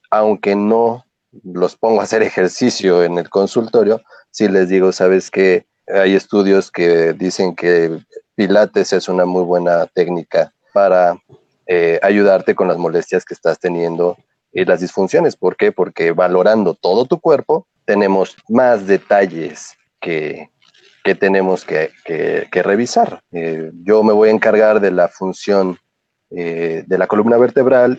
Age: 30-49